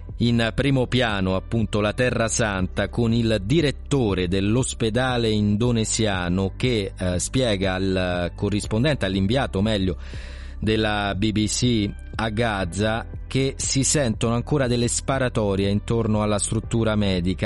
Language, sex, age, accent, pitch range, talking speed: Italian, male, 30-49, native, 100-120 Hz, 115 wpm